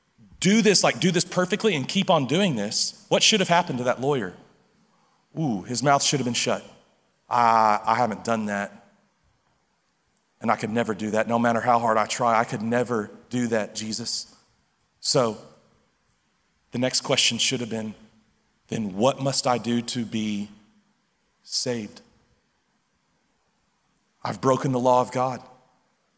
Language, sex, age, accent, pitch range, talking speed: English, male, 40-59, American, 120-195 Hz, 160 wpm